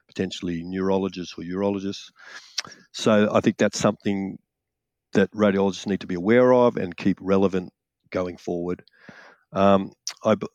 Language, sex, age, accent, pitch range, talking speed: English, male, 50-69, Australian, 95-105 Hz, 130 wpm